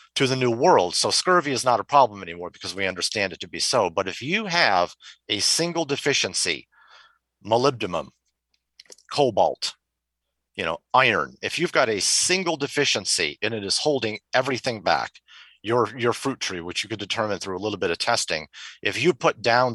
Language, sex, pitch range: English, male, 90-120 Hz